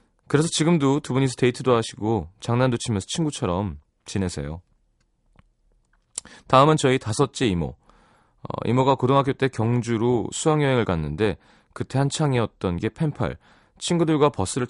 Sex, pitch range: male, 95-135 Hz